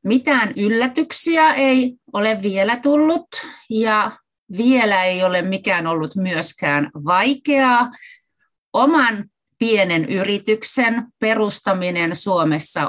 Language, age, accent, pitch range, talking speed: Finnish, 30-49, native, 165-255 Hz, 90 wpm